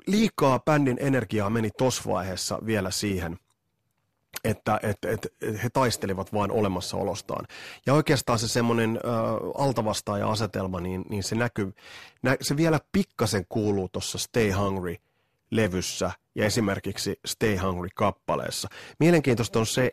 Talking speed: 125 wpm